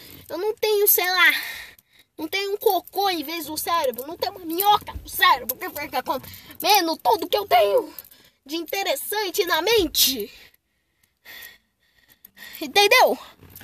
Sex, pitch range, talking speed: female, 330-455 Hz, 130 wpm